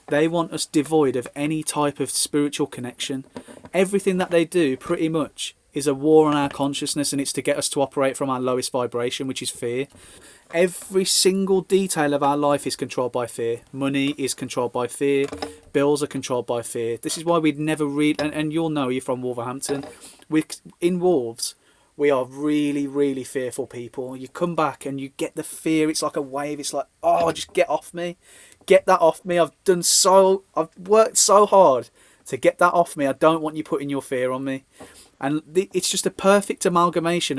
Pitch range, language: 135-160 Hz, English